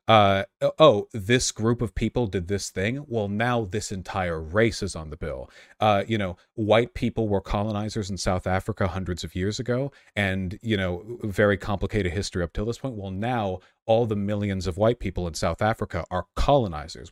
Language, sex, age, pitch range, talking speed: English, male, 40-59, 95-115 Hz, 195 wpm